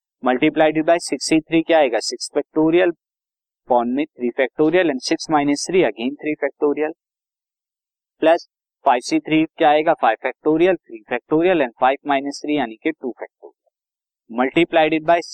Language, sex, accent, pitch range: Hindi, male, native, 130-160 Hz